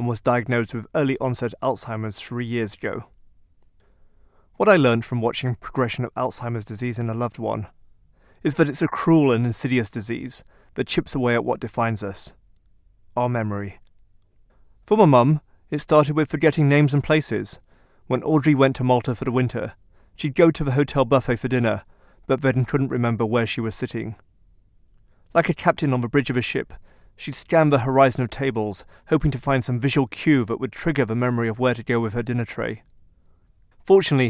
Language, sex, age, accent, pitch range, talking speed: English, male, 30-49, British, 105-135 Hz, 190 wpm